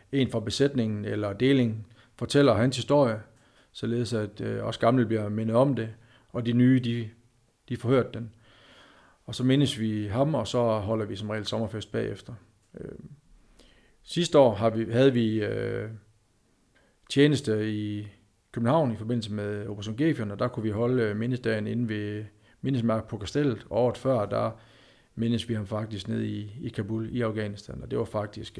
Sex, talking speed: male, 170 wpm